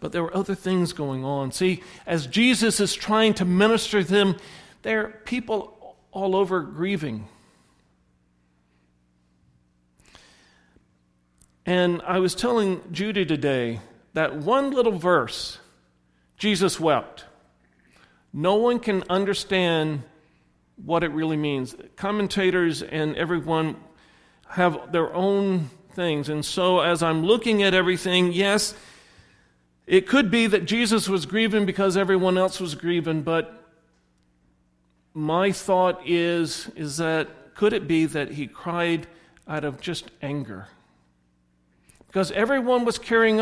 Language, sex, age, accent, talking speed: English, male, 50-69, American, 125 wpm